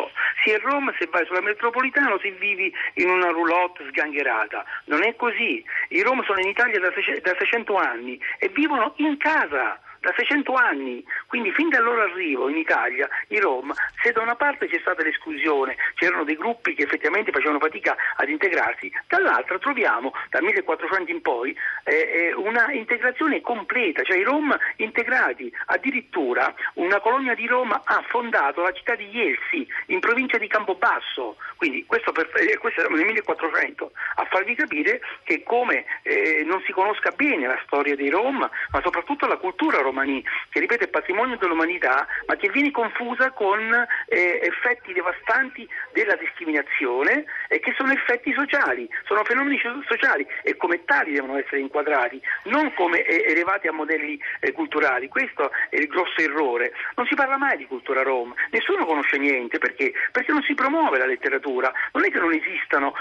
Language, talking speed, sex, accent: Italian, 170 wpm, male, native